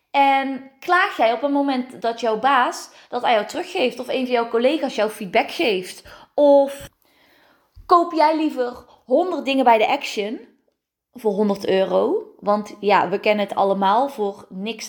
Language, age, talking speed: Dutch, 20-39, 165 wpm